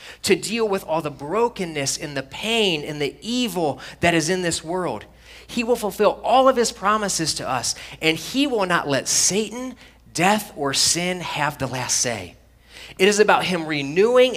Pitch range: 135-190 Hz